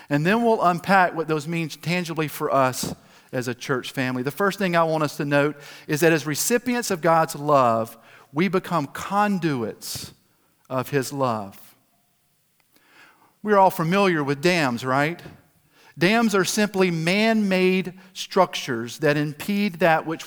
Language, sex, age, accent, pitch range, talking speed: English, male, 50-69, American, 150-195 Hz, 150 wpm